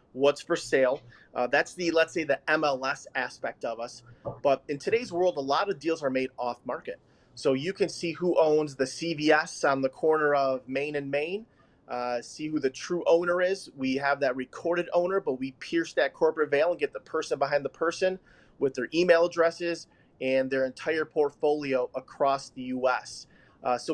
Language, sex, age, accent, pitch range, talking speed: English, male, 30-49, American, 130-165 Hz, 195 wpm